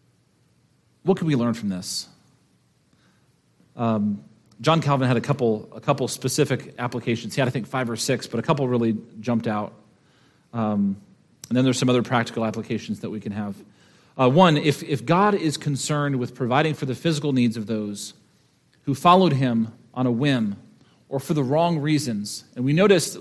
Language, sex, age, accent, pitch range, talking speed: English, male, 40-59, American, 120-155 Hz, 180 wpm